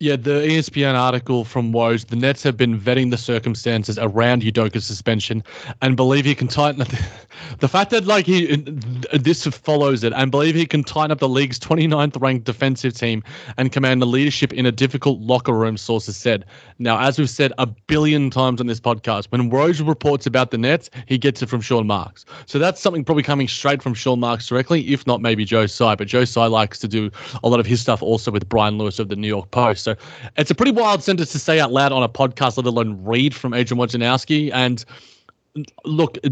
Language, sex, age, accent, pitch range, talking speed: English, male, 30-49, Australian, 120-145 Hz, 215 wpm